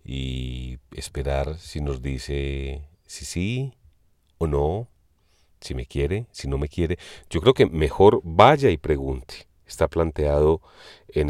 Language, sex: Spanish, male